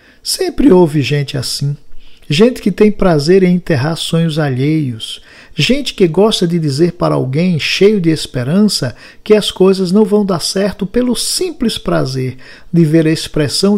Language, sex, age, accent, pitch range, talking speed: Portuguese, male, 50-69, Brazilian, 145-195 Hz, 155 wpm